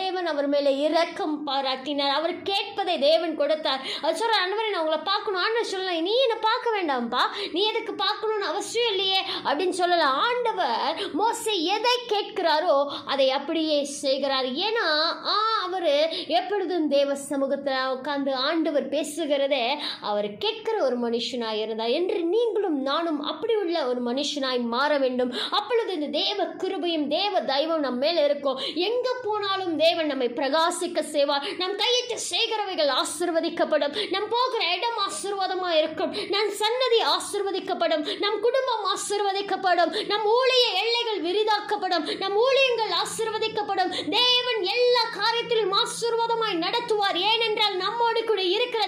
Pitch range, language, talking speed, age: 310-430 Hz, Tamil, 60 wpm, 20-39